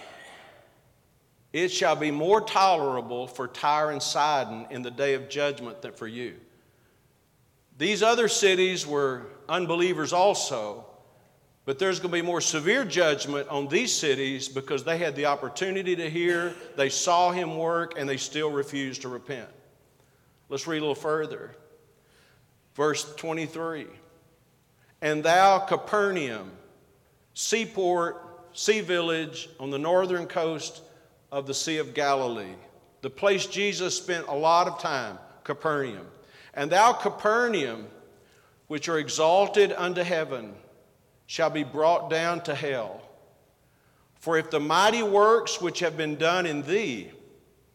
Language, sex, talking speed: English, male, 135 wpm